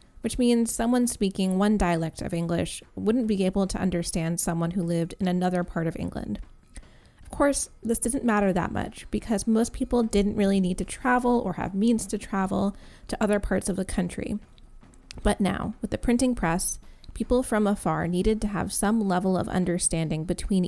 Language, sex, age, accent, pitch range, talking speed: English, female, 20-39, American, 175-220 Hz, 185 wpm